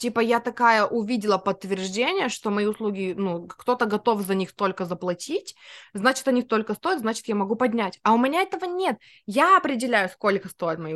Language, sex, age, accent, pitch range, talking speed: Russian, female, 20-39, native, 180-230 Hz, 180 wpm